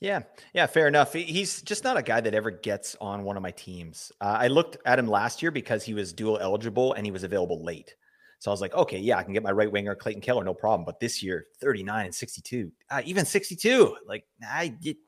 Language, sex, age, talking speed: English, male, 30-49, 255 wpm